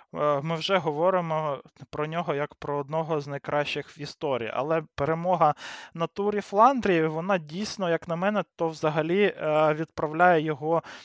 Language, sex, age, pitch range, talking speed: Ukrainian, male, 20-39, 145-180 Hz, 140 wpm